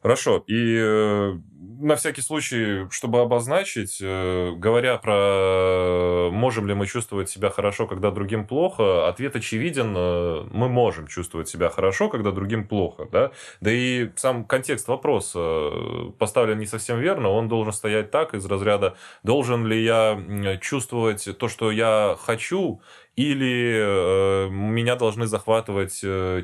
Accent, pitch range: native, 95-115 Hz